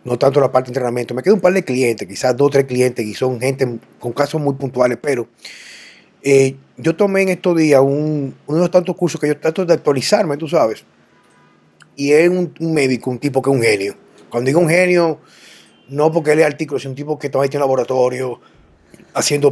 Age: 30-49